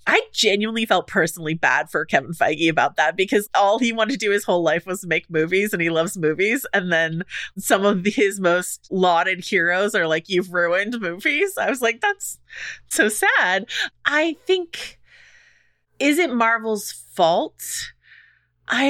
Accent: American